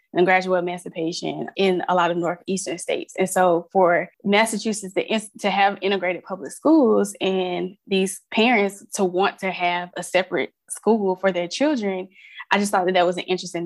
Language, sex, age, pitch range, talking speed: English, female, 20-39, 180-205 Hz, 175 wpm